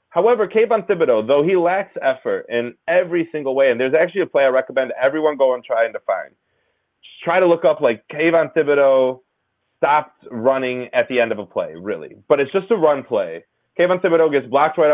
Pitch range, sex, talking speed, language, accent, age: 135-175 Hz, male, 210 wpm, English, American, 30-49